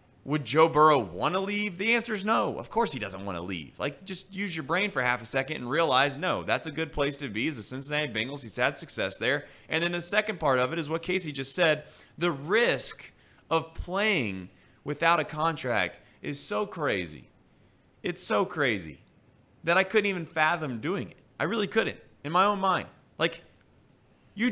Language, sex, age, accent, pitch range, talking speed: English, male, 30-49, American, 115-170 Hz, 205 wpm